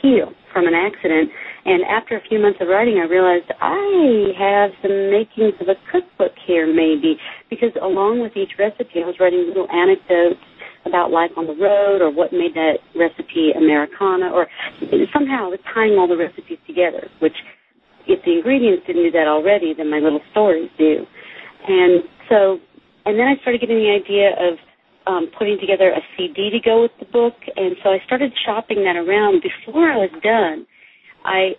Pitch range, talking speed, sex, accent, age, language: 175-235 Hz, 180 wpm, female, American, 40-59, English